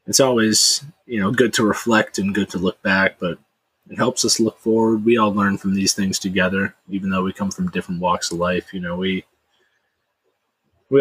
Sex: male